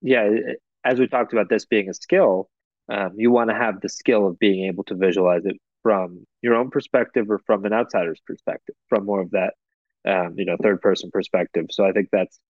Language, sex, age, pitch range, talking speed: English, male, 20-39, 95-115 Hz, 210 wpm